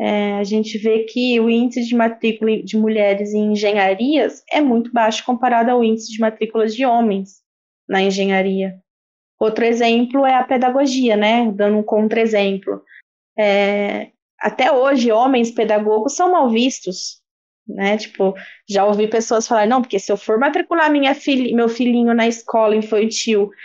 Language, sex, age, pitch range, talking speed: Portuguese, female, 20-39, 215-255 Hz, 155 wpm